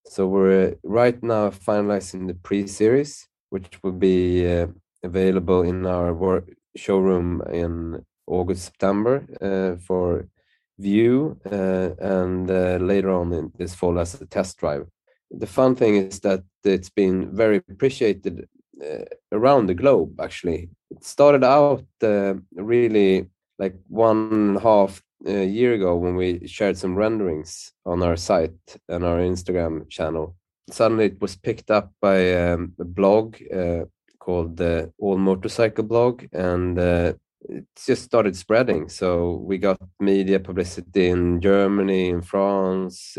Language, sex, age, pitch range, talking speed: English, male, 30-49, 90-100 Hz, 140 wpm